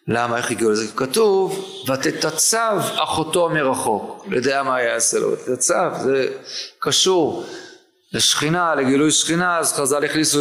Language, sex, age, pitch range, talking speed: Hebrew, male, 40-59, 130-180 Hz, 125 wpm